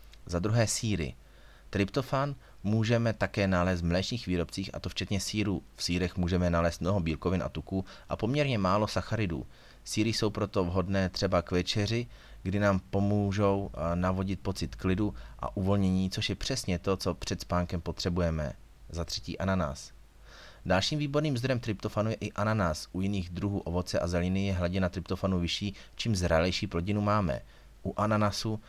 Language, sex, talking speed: Czech, male, 155 wpm